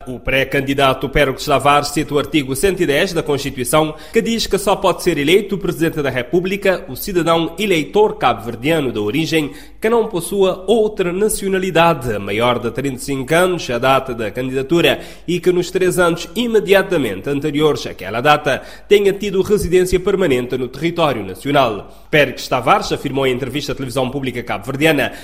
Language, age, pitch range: Portuguese, 20-39, 140-195 Hz